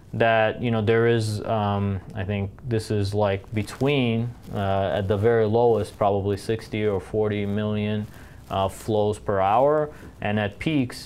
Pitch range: 95-120 Hz